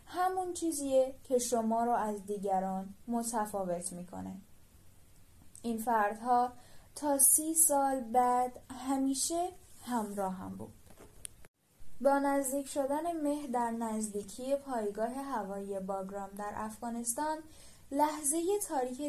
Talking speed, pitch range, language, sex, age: 100 wpm, 205-260 Hz, Persian, female, 10-29